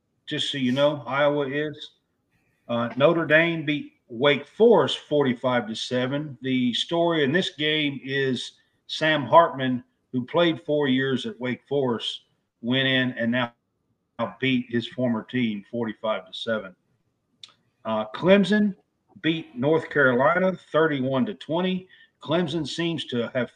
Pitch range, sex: 125-155 Hz, male